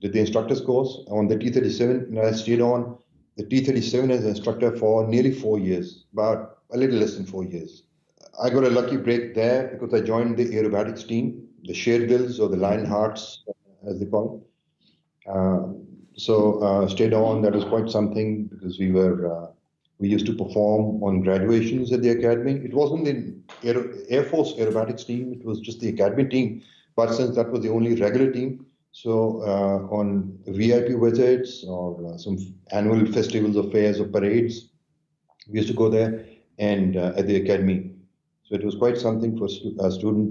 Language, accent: English, Indian